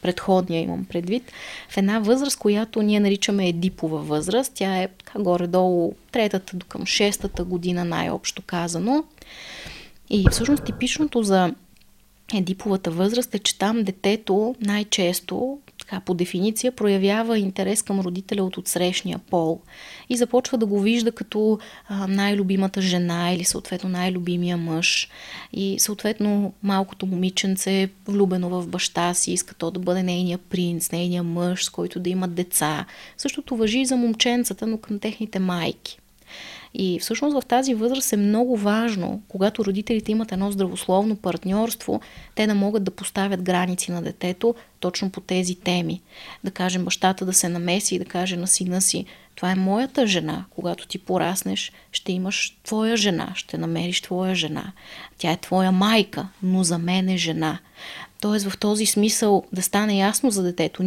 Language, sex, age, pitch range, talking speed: Bulgarian, female, 20-39, 180-215 Hz, 155 wpm